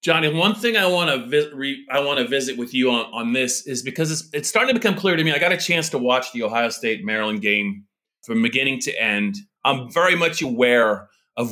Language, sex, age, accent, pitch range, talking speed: English, male, 30-49, American, 110-175 Hz, 240 wpm